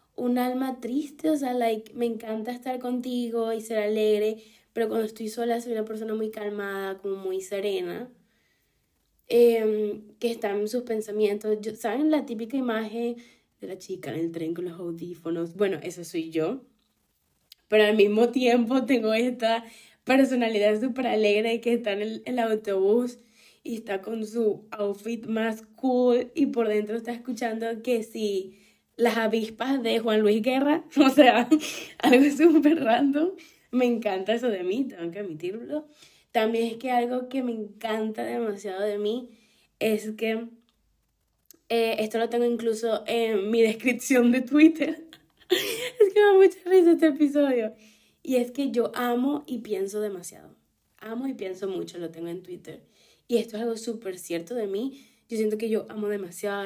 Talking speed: 165 wpm